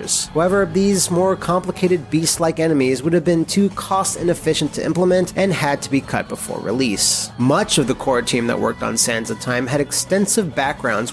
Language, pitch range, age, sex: English, 135-185 Hz, 30-49, male